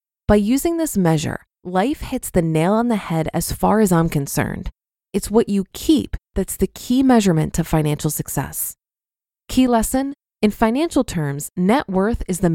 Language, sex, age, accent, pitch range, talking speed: English, female, 20-39, American, 170-245 Hz, 170 wpm